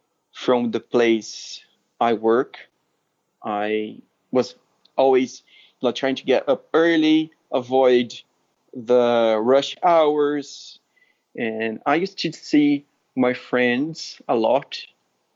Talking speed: 100 wpm